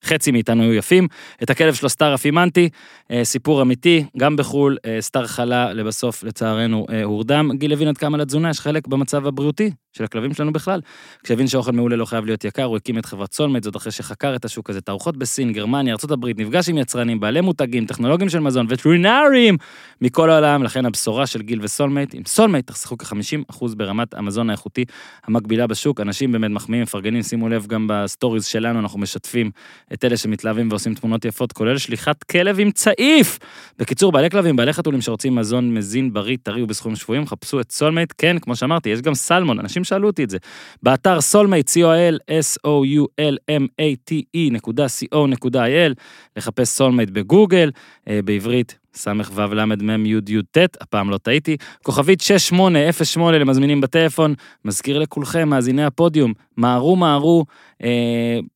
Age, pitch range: 20-39, 115-150 Hz